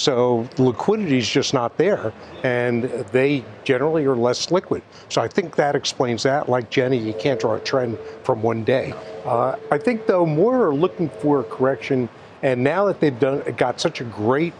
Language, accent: English, American